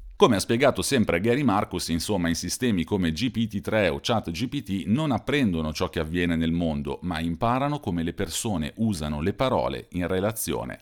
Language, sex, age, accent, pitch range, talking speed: Italian, male, 40-59, native, 80-105 Hz, 165 wpm